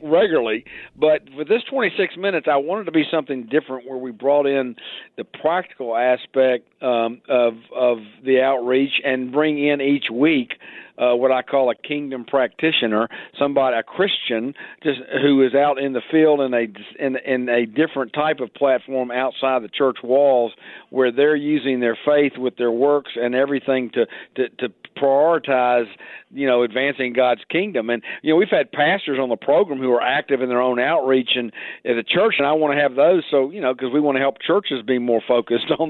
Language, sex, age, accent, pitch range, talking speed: English, male, 50-69, American, 125-145 Hz, 195 wpm